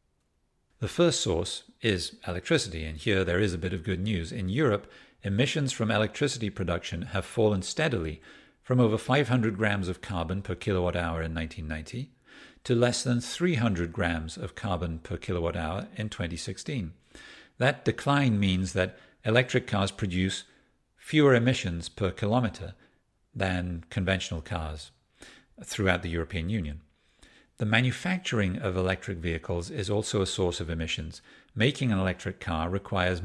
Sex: male